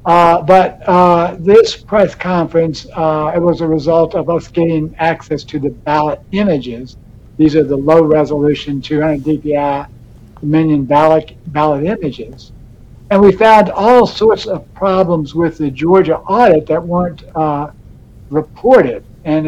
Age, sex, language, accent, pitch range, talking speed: 60-79, male, English, American, 150-180 Hz, 140 wpm